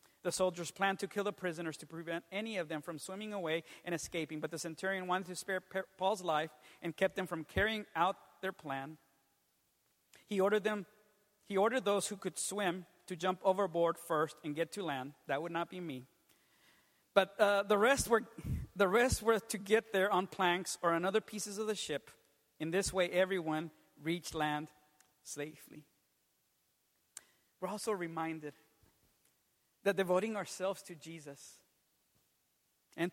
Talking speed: 165 wpm